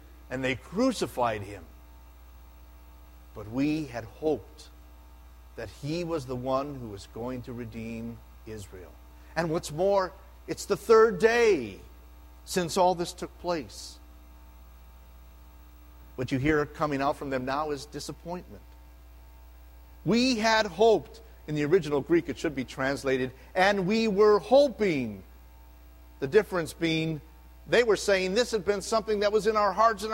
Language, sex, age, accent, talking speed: English, male, 50-69, American, 145 wpm